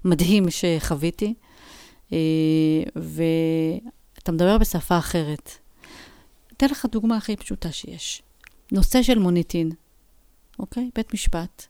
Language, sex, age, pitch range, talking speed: Hebrew, female, 40-59, 170-230 Hz, 90 wpm